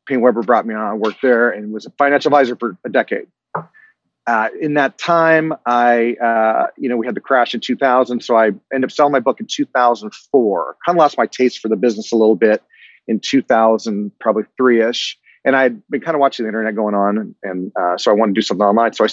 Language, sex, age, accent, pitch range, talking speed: English, male, 30-49, American, 110-135 Hz, 240 wpm